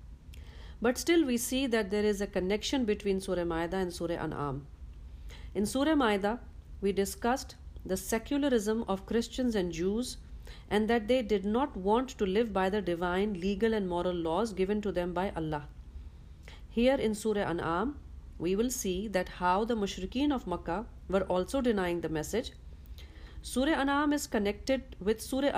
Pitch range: 175-230 Hz